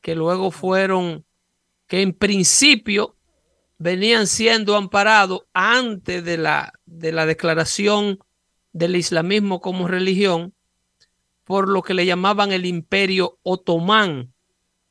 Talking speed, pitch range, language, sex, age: 105 wpm, 170-205 Hz, Spanish, male, 60-79